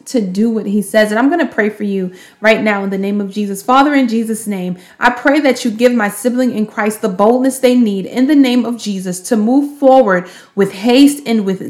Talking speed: 245 wpm